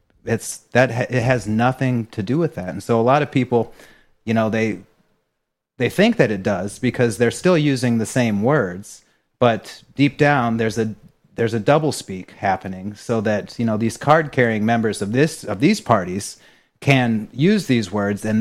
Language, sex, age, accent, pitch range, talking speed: English, male, 30-49, American, 105-125 Hz, 190 wpm